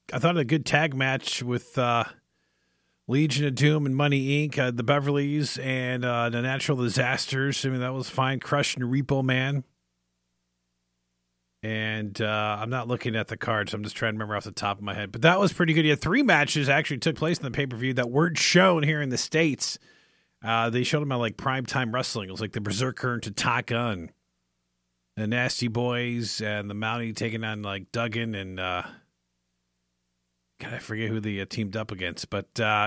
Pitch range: 100-135 Hz